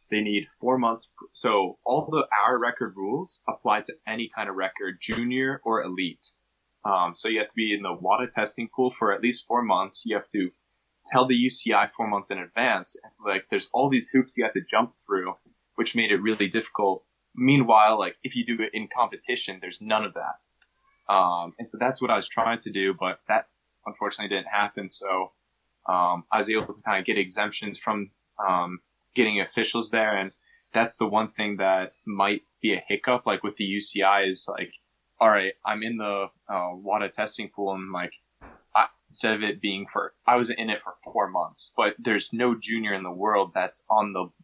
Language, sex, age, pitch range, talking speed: English, male, 20-39, 95-115 Hz, 205 wpm